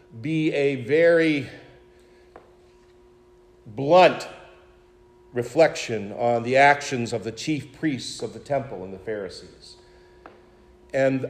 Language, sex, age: English, male, 50-69